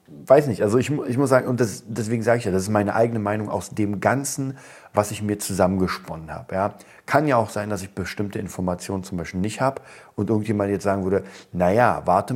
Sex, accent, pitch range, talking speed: male, German, 95-110 Hz, 215 wpm